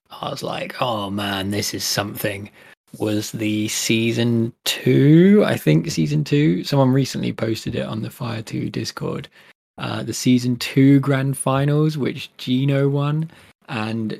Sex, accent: male, British